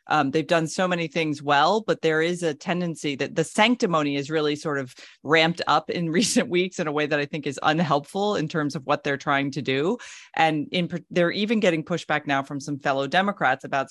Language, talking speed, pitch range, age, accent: English, 220 wpm, 145-175 Hz, 30-49, American